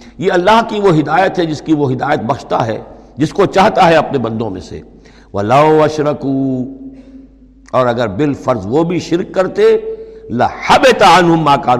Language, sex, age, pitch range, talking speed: Urdu, male, 60-79, 110-170 Hz, 155 wpm